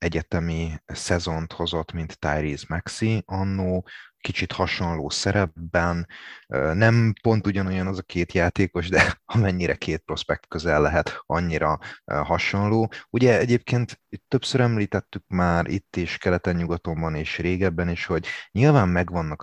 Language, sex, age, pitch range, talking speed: Hungarian, male, 30-49, 80-100 Hz, 125 wpm